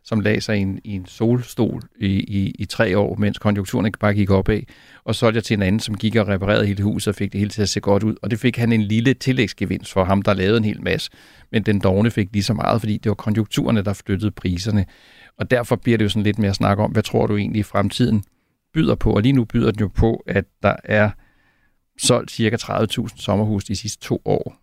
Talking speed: 250 wpm